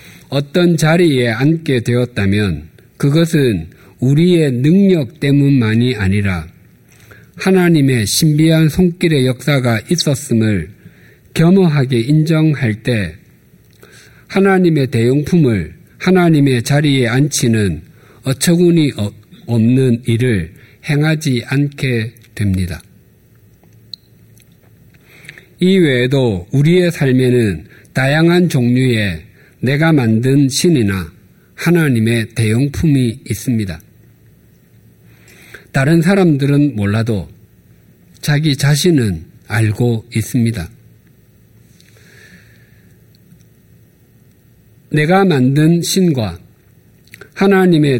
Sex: male